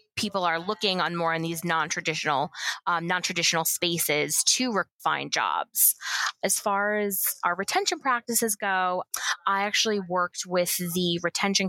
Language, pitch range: English, 165-195 Hz